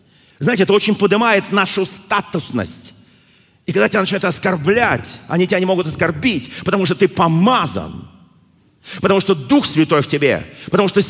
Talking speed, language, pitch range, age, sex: 150 wpm, Russian, 125-195 Hz, 40-59, male